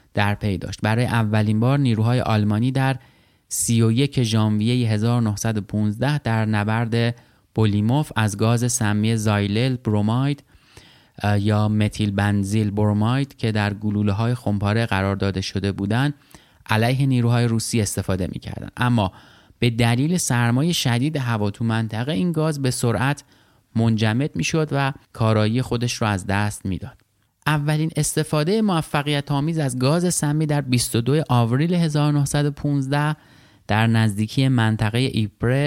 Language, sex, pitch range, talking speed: Persian, male, 105-135 Hz, 130 wpm